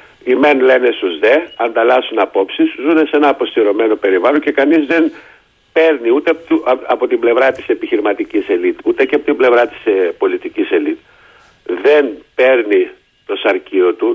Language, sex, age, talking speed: Greek, male, 60-79, 155 wpm